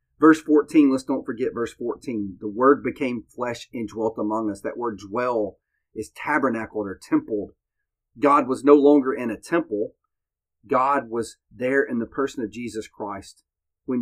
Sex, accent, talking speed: male, American, 165 wpm